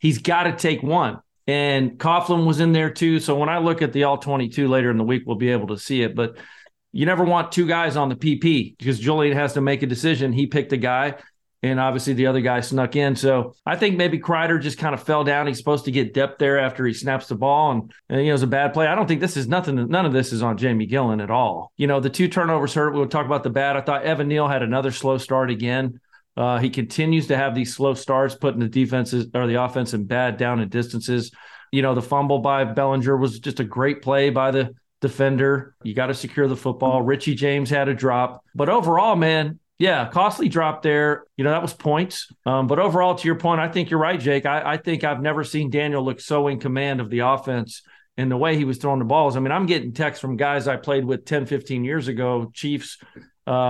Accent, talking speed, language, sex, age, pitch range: American, 250 wpm, English, male, 40-59, 125-150 Hz